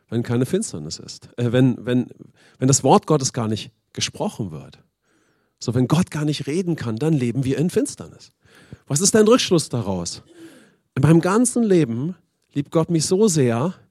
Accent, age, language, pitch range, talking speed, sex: German, 40-59, English, 135-195 Hz, 170 wpm, male